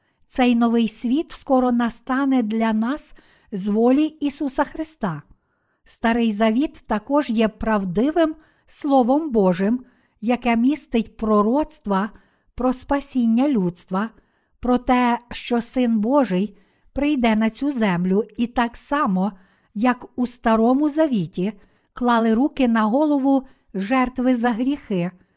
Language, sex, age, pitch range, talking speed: Ukrainian, female, 50-69, 220-270 Hz, 110 wpm